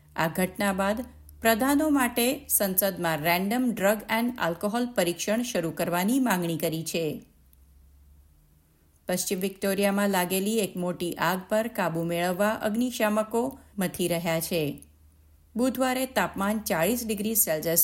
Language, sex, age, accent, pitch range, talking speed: Gujarati, female, 50-69, native, 165-220 Hz, 110 wpm